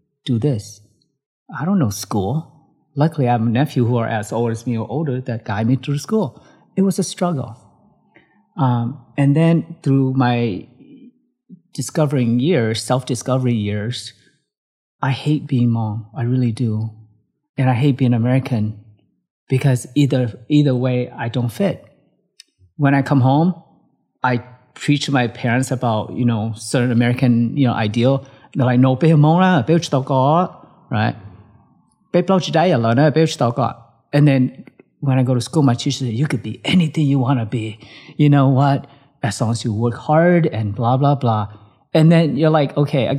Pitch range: 115-150 Hz